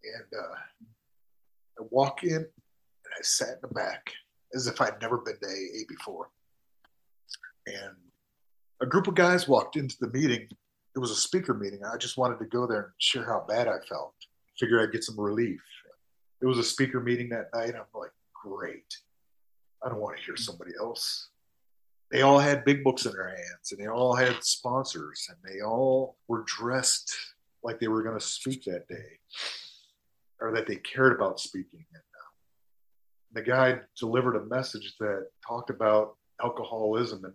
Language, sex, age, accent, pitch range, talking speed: English, male, 40-59, American, 110-135 Hz, 180 wpm